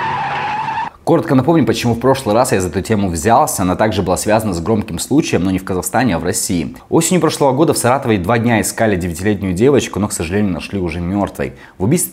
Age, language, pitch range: 20-39, Russian, 90-115 Hz